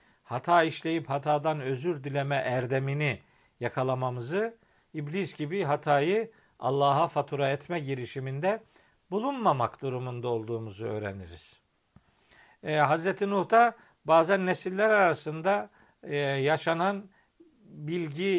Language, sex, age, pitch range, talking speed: Turkish, male, 50-69, 135-185 Hz, 90 wpm